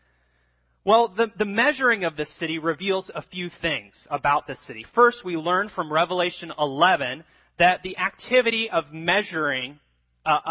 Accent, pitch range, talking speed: American, 120-175 Hz, 150 wpm